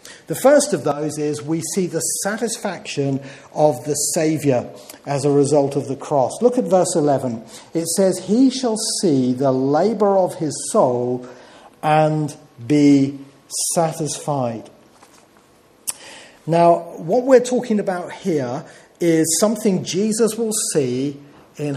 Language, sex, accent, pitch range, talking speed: English, male, British, 140-195 Hz, 130 wpm